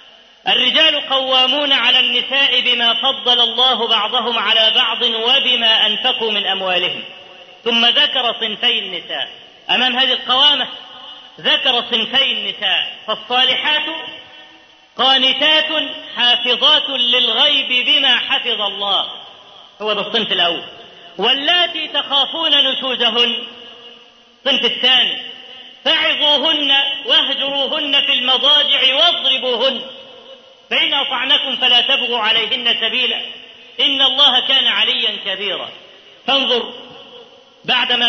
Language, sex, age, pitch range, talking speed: Arabic, female, 40-59, 235-280 Hz, 90 wpm